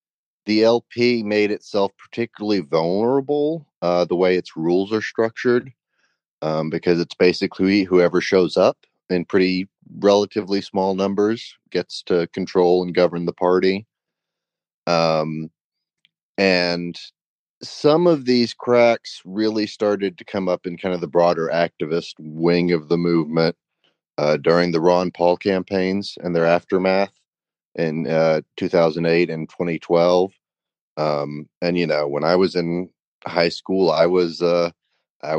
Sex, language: male, English